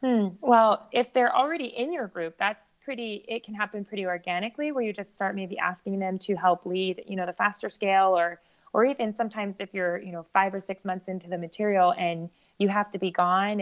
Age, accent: 20-39, American